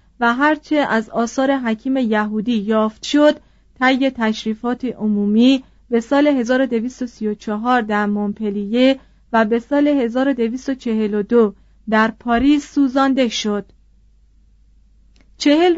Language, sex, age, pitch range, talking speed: Persian, female, 40-59, 220-270 Hz, 95 wpm